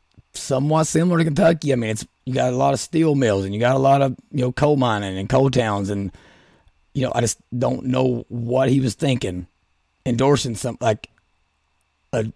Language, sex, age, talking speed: English, male, 30-49, 205 wpm